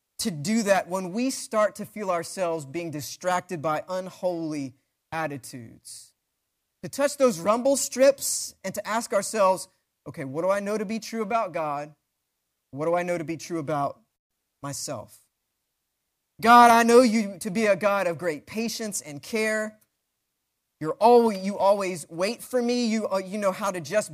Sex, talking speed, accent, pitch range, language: male, 170 wpm, American, 155-215 Hz, English